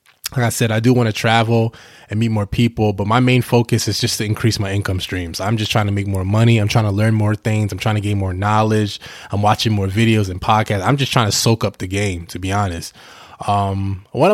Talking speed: 255 wpm